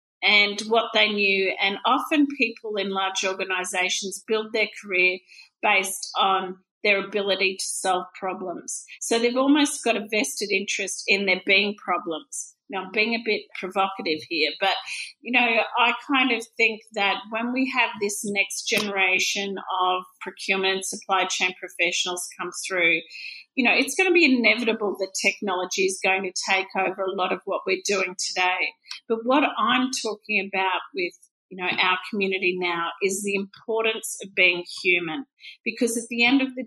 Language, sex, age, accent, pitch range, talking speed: English, female, 40-59, Australian, 185-230 Hz, 170 wpm